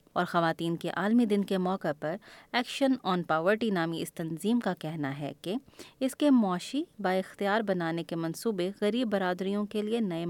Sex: female